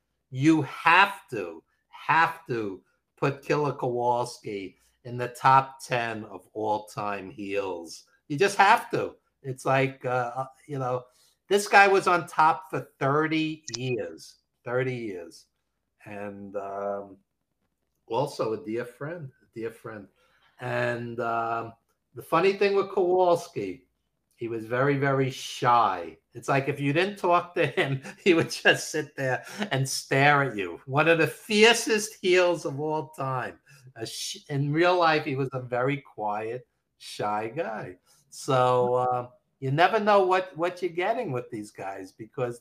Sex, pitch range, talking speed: male, 115-155 Hz, 145 wpm